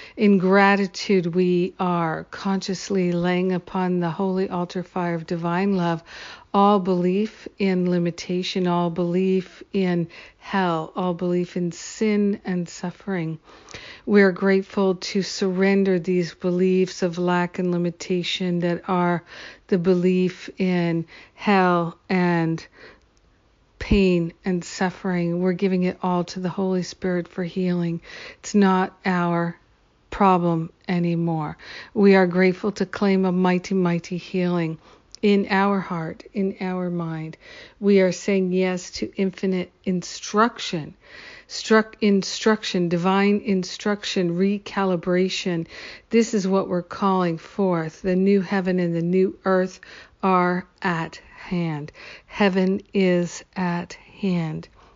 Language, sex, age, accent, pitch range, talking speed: English, female, 50-69, American, 175-195 Hz, 120 wpm